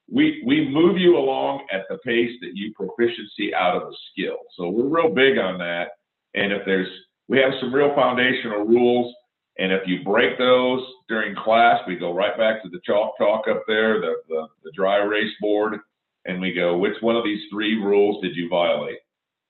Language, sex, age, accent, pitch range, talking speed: English, male, 50-69, American, 95-125 Hz, 195 wpm